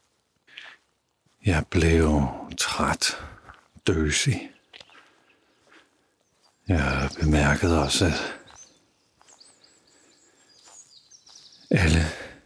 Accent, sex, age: native, male, 60-79